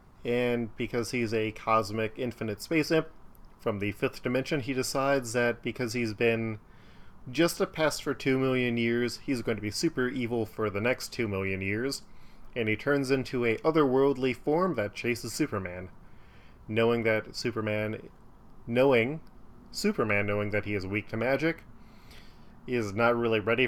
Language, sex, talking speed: English, male, 160 wpm